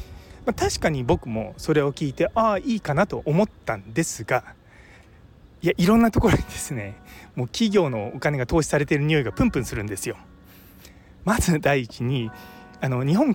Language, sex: Japanese, male